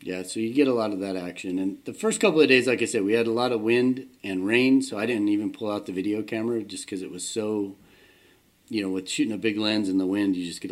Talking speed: 295 wpm